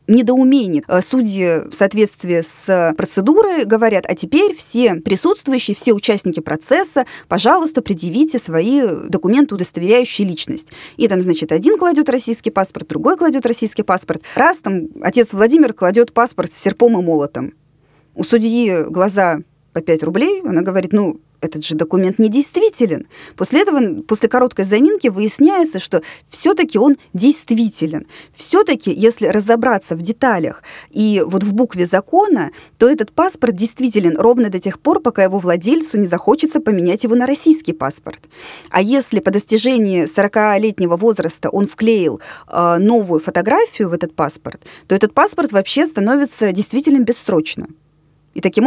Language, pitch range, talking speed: Russian, 185-265 Hz, 140 wpm